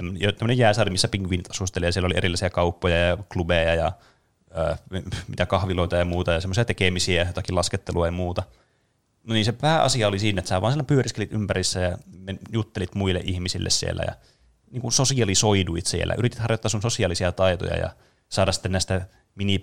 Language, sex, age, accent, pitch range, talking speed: Finnish, male, 20-39, native, 90-110 Hz, 175 wpm